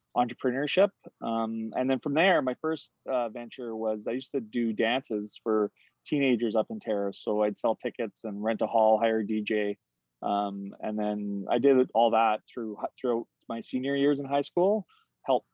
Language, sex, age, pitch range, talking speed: English, male, 30-49, 105-135 Hz, 185 wpm